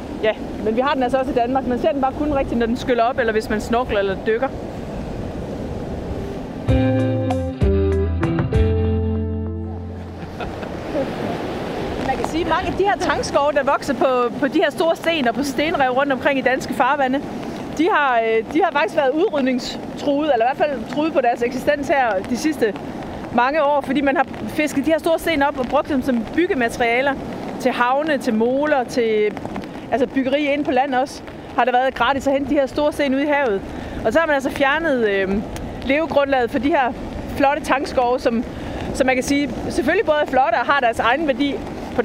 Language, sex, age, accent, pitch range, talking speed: Danish, female, 30-49, native, 235-290 Hz, 195 wpm